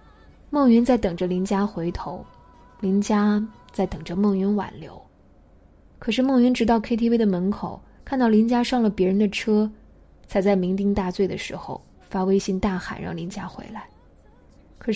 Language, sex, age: Chinese, female, 20-39